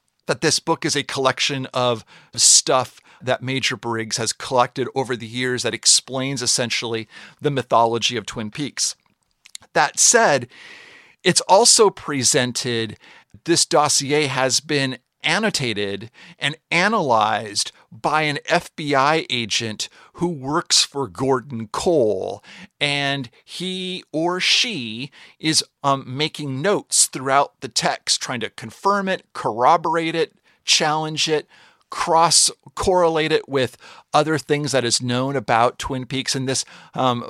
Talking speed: 125 wpm